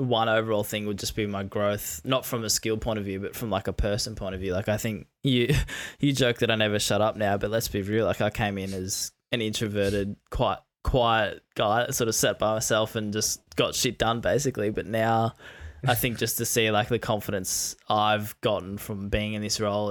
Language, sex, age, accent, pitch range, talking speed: English, male, 10-29, Australian, 105-120 Hz, 230 wpm